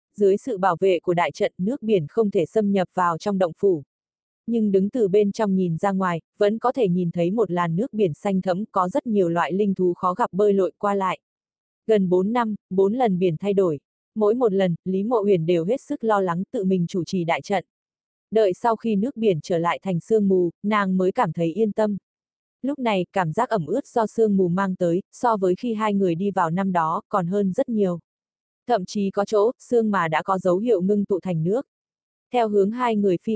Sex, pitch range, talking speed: female, 180-220 Hz, 235 wpm